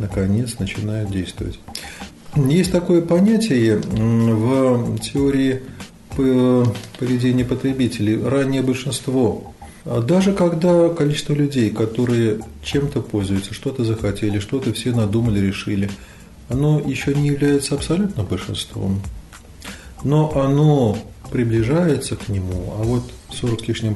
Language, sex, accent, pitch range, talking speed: Russian, male, native, 110-140 Hz, 105 wpm